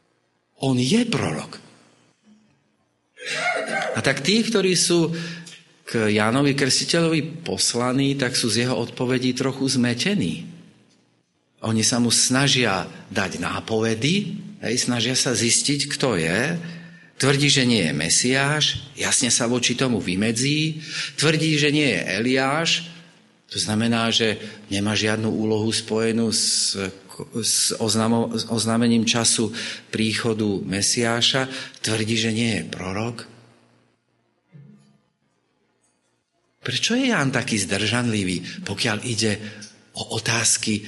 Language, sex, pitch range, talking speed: Slovak, male, 110-145 Hz, 105 wpm